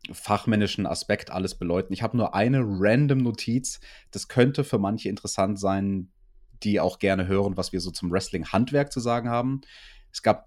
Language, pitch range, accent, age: German, 95-125 Hz, German, 30-49